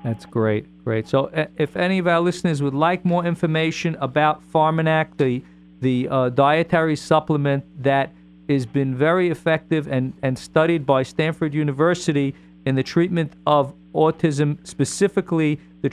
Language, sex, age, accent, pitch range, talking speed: English, male, 50-69, American, 135-165 Hz, 145 wpm